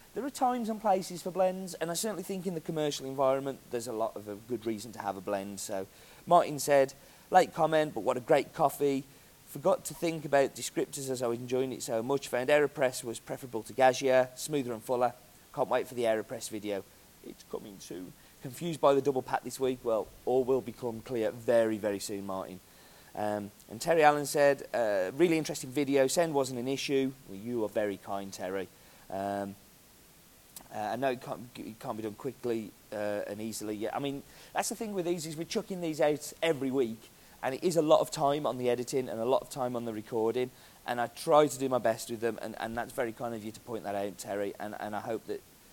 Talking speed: 230 wpm